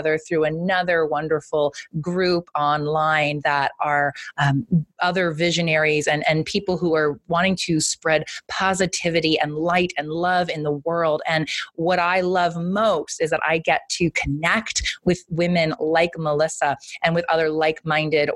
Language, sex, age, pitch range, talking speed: English, female, 30-49, 155-180 Hz, 145 wpm